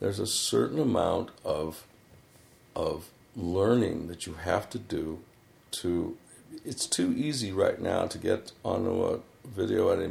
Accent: American